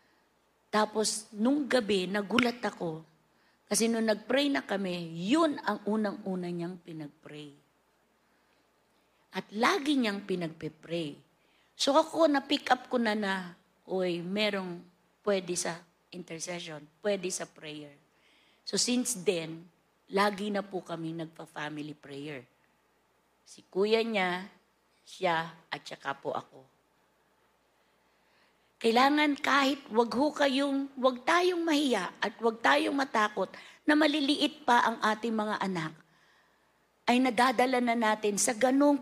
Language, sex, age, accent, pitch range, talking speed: Filipino, female, 50-69, native, 175-250 Hz, 115 wpm